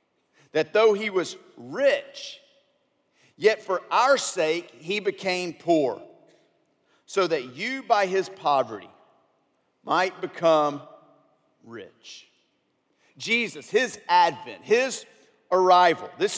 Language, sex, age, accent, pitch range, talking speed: English, male, 50-69, American, 155-220 Hz, 100 wpm